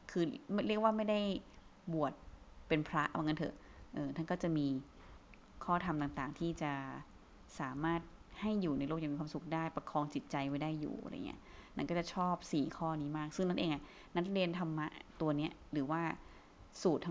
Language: Thai